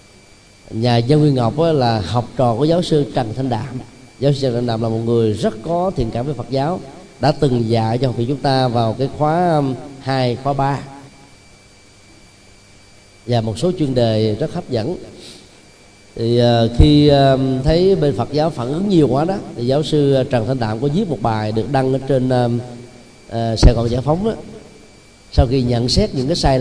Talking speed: 195 wpm